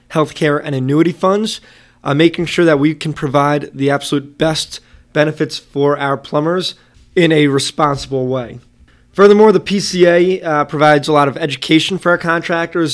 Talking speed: 160 wpm